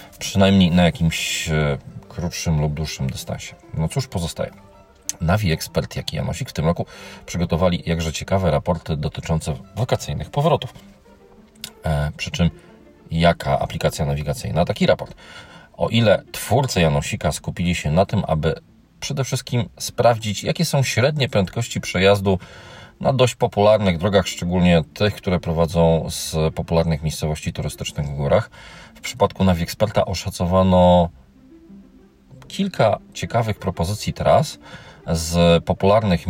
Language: Polish